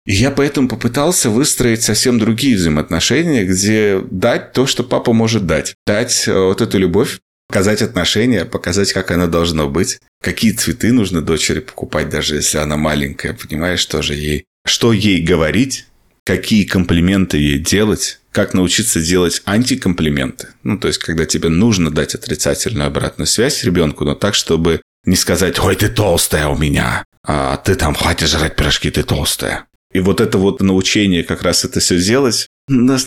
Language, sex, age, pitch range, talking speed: Russian, male, 30-49, 80-105 Hz, 165 wpm